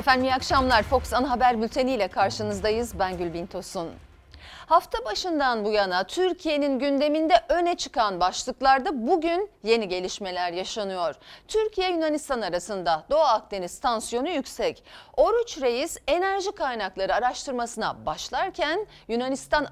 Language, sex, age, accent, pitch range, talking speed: Turkish, female, 40-59, native, 205-315 Hz, 115 wpm